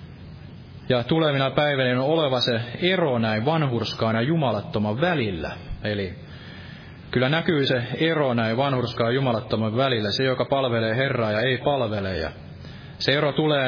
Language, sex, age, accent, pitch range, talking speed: Finnish, male, 30-49, native, 110-140 Hz, 145 wpm